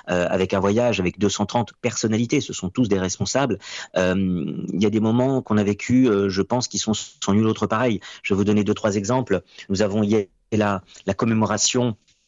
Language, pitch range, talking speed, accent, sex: French, 95-110 Hz, 210 wpm, French, male